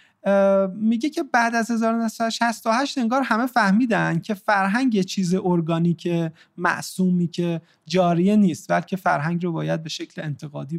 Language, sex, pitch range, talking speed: Persian, male, 170-215 Hz, 130 wpm